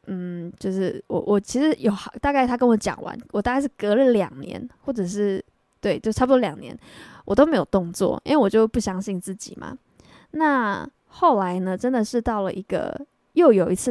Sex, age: female, 10-29